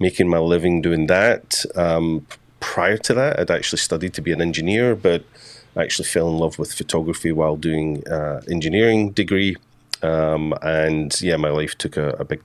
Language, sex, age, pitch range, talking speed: English, male, 30-49, 80-90 Hz, 185 wpm